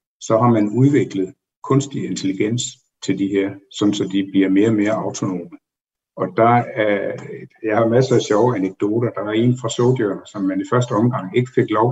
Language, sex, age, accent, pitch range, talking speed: Danish, male, 60-79, native, 95-125 Hz, 190 wpm